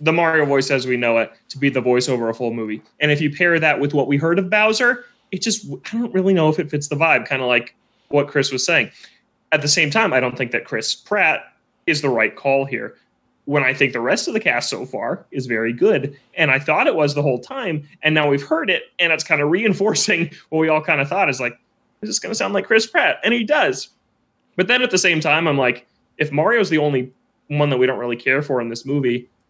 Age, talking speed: 30-49, 265 wpm